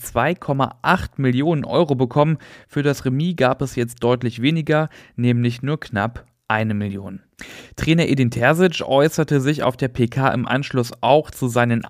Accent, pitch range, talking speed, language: German, 115-145 Hz, 145 wpm, German